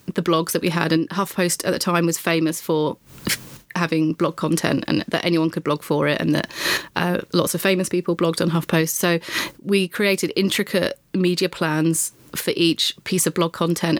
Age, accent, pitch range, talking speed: 30-49, British, 165-180 Hz, 195 wpm